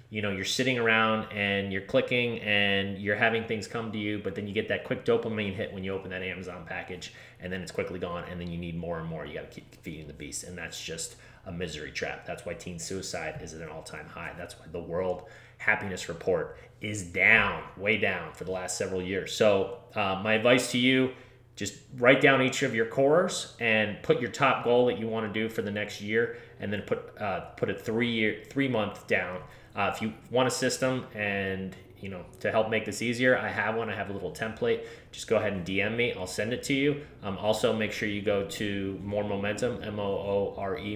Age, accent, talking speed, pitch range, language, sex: 30-49, American, 235 wpm, 95-120 Hz, English, male